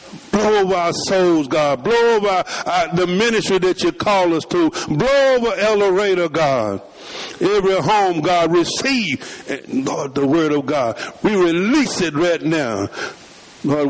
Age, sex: 60-79, male